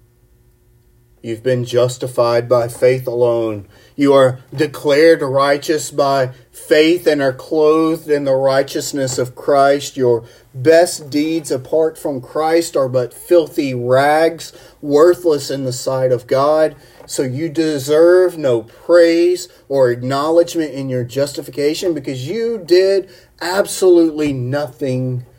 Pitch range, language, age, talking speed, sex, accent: 120-145 Hz, English, 40-59, 120 wpm, male, American